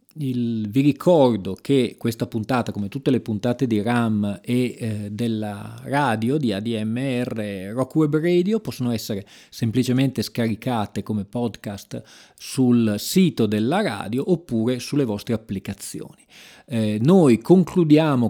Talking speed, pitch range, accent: 120 wpm, 110-145 Hz, native